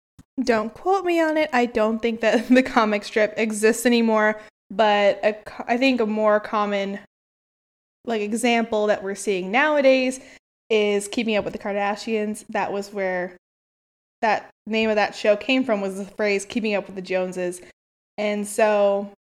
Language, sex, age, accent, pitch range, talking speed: English, female, 20-39, American, 210-255 Hz, 160 wpm